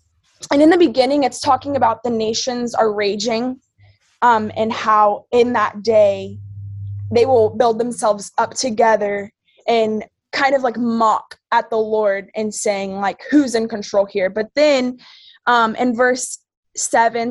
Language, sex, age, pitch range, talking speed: English, female, 20-39, 210-255 Hz, 155 wpm